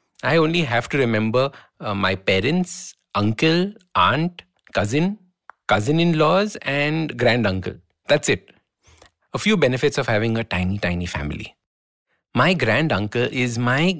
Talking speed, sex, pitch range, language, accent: 135 wpm, male, 105-145 Hz, English, Indian